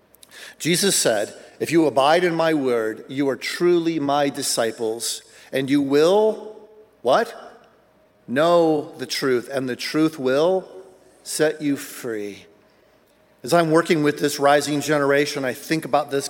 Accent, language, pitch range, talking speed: American, English, 125-160 Hz, 140 wpm